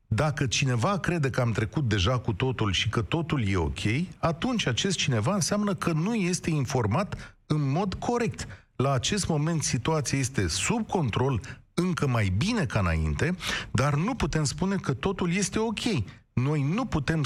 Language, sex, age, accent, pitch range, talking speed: Romanian, male, 40-59, native, 120-180 Hz, 165 wpm